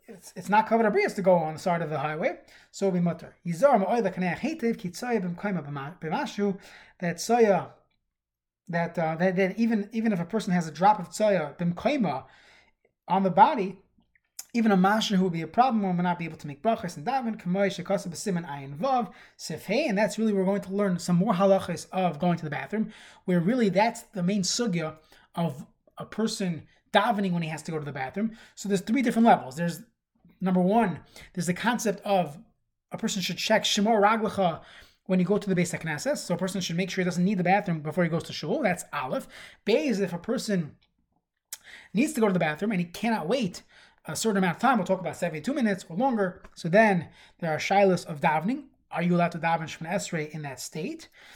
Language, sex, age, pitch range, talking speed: English, male, 20-39, 170-215 Hz, 200 wpm